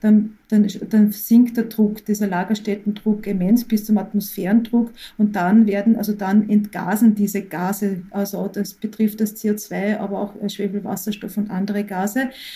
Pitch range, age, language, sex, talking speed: 195-215 Hz, 40-59, German, female, 150 wpm